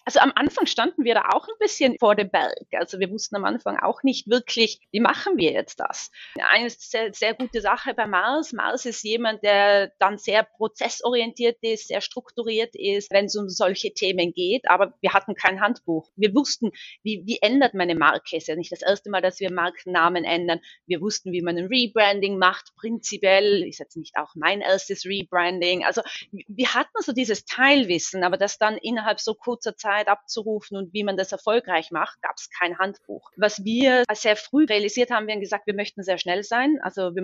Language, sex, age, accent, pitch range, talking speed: German, female, 30-49, German, 190-235 Hz, 205 wpm